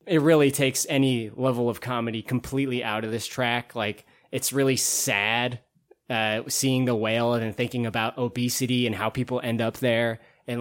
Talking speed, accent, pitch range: 180 wpm, American, 120-145 Hz